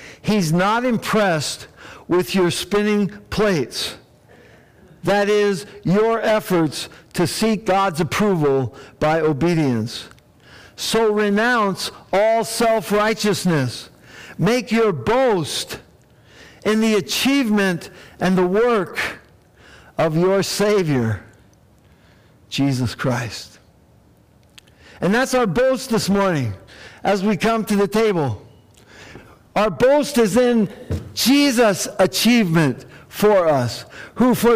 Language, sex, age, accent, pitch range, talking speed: English, male, 60-79, American, 140-230 Hz, 100 wpm